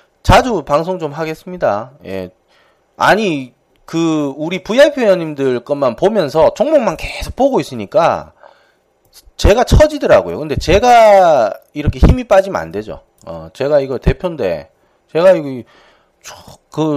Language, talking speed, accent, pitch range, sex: English, 115 wpm, Korean, 115-185 Hz, male